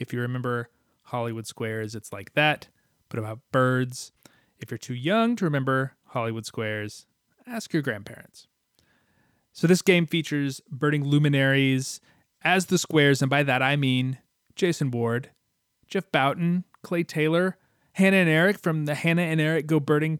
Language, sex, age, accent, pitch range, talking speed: English, male, 30-49, American, 120-165 Hz, 155 wpm